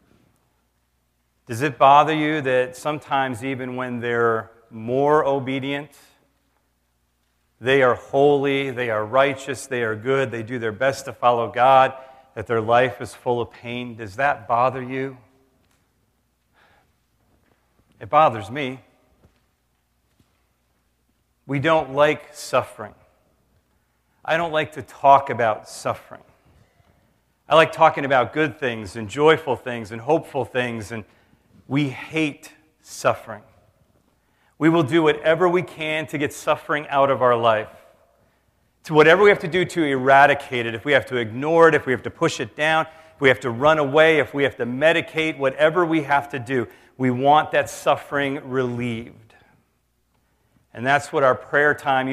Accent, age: American, 40-59